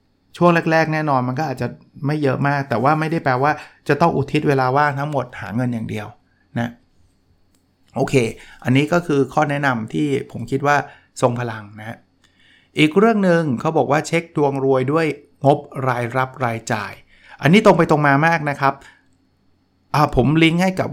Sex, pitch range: male, 115-145 Hz